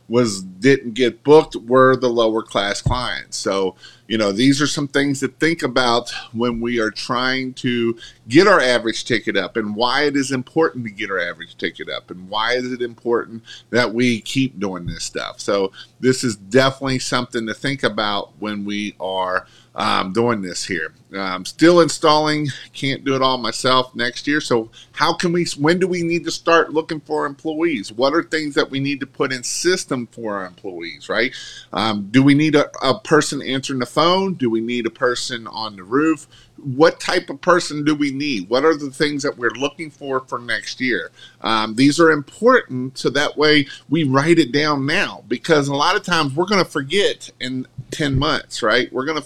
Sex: male